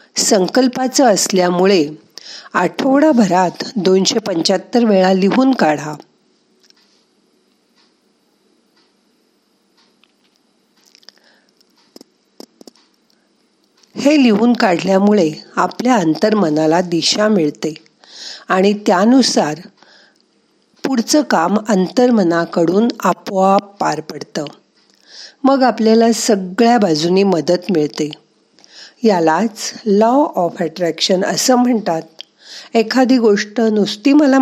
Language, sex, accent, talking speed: Marathi, female, native, 70 wpm